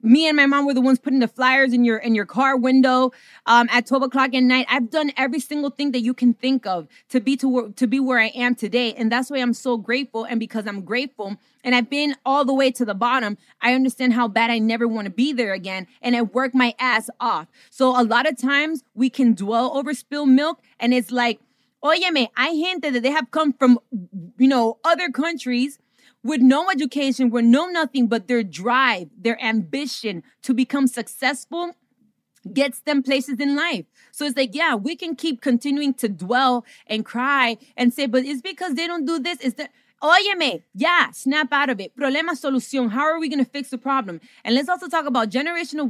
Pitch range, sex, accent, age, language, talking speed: 240-280 Hz, female, American, 20-39, English, 220 wpm